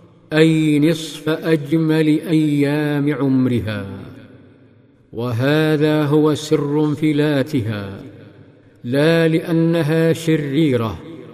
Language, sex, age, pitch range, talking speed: Arabic, male, 50-69, 145-160 Hz, 65 wpm